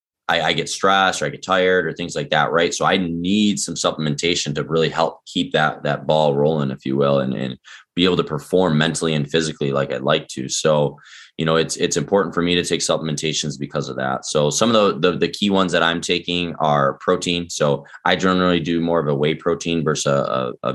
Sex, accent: male, American